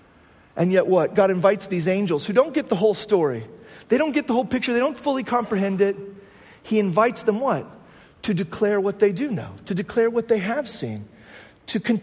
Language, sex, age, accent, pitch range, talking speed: English, male, 40-59, American, 185-235 Hz, 205 wpm